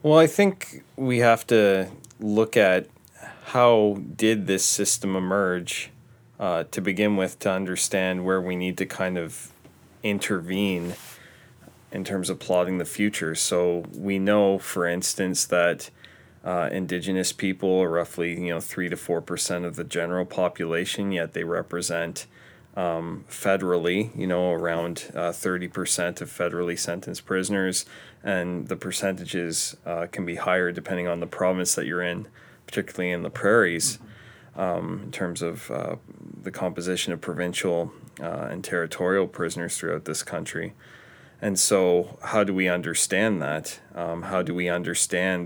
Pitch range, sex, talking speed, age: 85-95 Hz, male, 150 wpm, 20-39